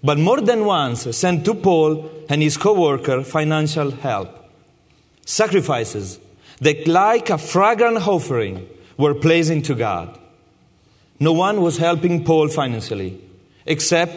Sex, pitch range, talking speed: male, 140-185 Hz, 125 wpm